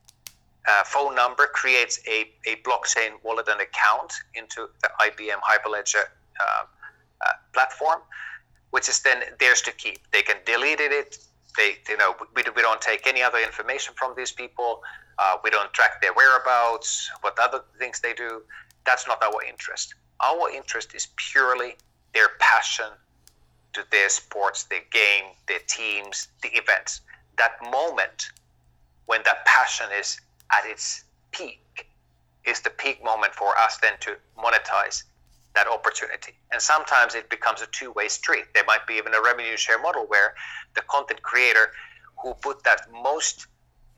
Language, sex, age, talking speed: English, male, 30-49, 155 wpm